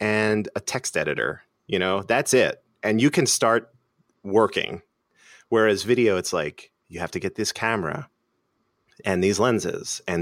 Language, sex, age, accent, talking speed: English, male, 30-49, American, 160 wpm